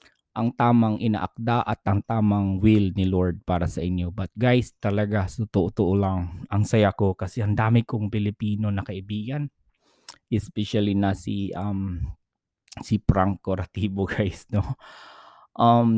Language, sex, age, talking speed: Filipino, male, 20-39, 140 wpm